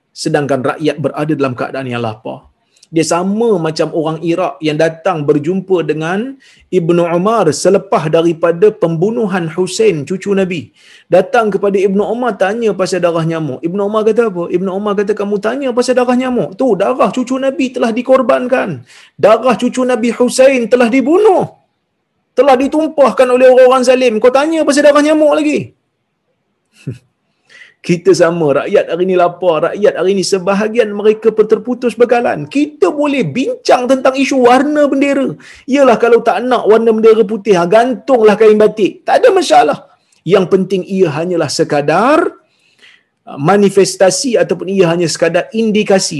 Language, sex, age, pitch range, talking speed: Malayalam, male, 30-49, 170-245 Hz, 145 wpm